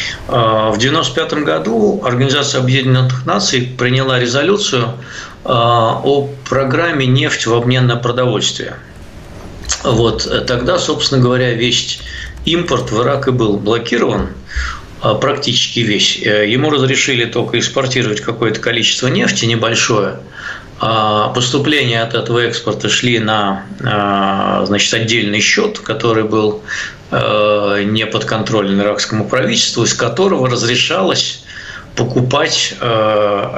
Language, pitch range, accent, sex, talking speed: Russian, 110-135 Hz, native, male, 95 wpm